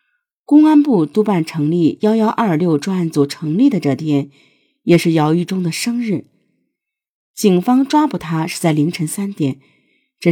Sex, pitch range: female, 150-195 Hz